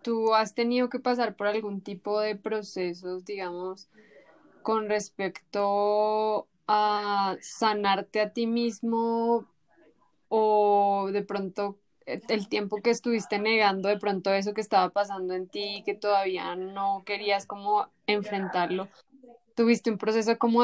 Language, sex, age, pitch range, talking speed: Spanish, female, 10-29, 195-220 Hz, 130 wpm